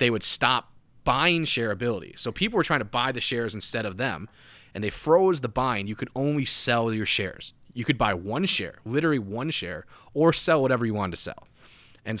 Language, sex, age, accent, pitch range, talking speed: English, male, 20-39, American, 105-130 Hz, 210 wpm